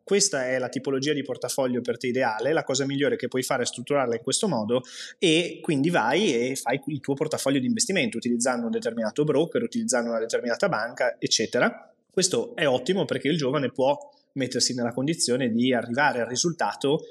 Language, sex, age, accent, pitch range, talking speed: Italian, male, 20-39, native, 130-170 Hz, 185 wpm